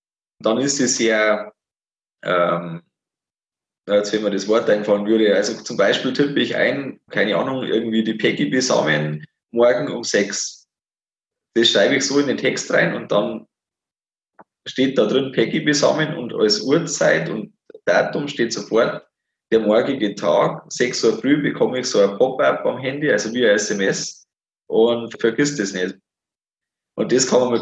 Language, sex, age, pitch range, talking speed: German, male, 20-39, 105-125 Hz, 165 wpm